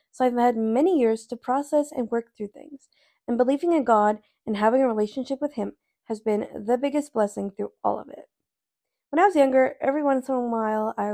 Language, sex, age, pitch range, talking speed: English, female, 20-39, 220-280 Hz, 215 wpm